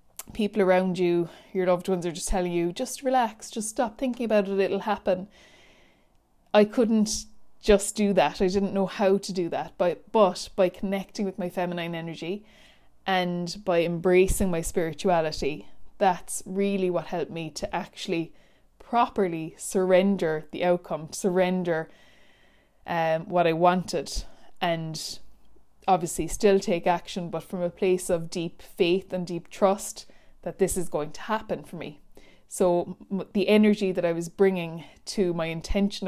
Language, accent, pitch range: English, Irish, 170-195 Hz